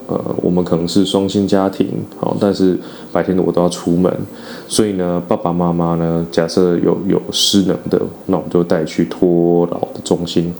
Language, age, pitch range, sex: Chinese, 20-39, 85-100 Hz, male